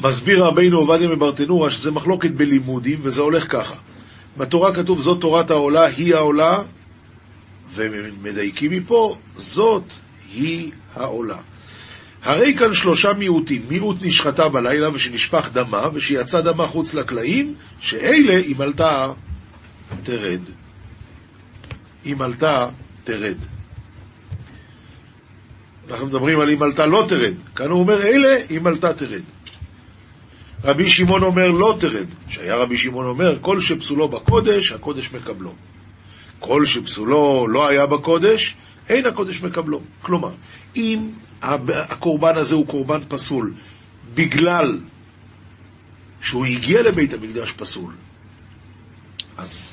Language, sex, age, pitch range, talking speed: Hebrew, male, 50-69, 110-165 Hz, 110 wpm